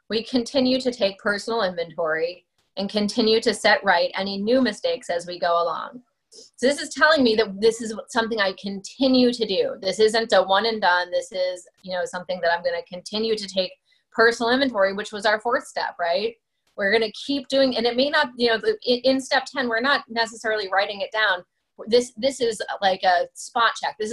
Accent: American